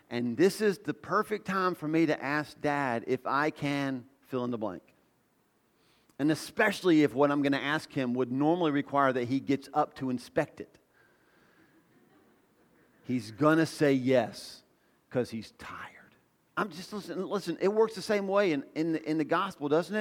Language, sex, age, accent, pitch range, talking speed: English, male, 40-59, American, 145-205 Hz, 180 wpm